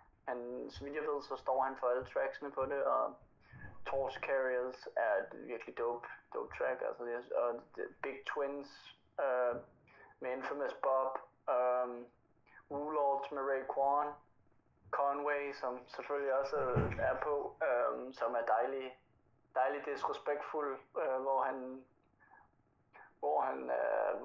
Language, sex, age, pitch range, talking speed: Danish, male, 20-39, 120-140 Hz, 125 wpm